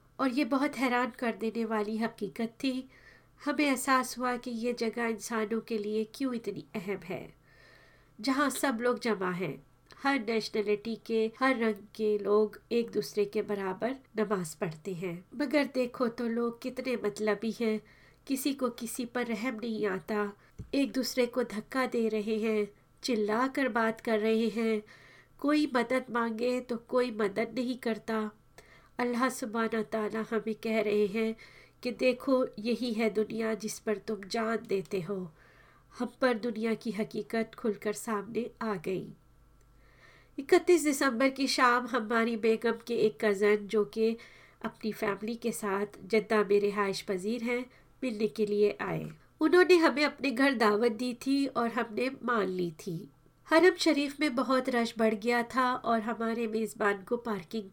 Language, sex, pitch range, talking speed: Hindi, female, 210-250 Hz, 155 wpm